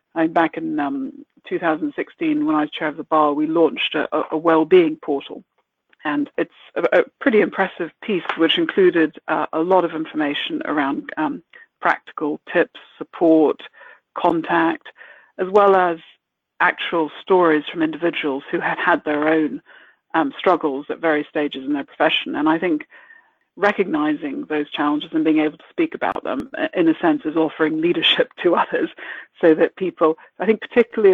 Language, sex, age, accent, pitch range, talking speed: English, female, 50-69, British, 155-220 Hz, 170 wpm